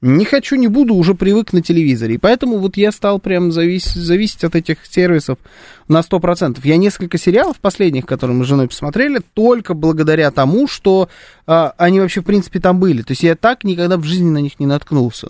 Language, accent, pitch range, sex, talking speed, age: Russian, native, 130-185 Hz, male, 205 wpm, 20-39